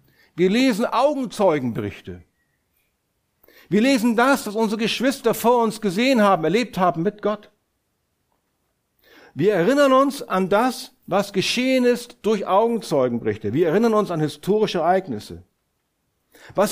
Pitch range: 155-220 Hz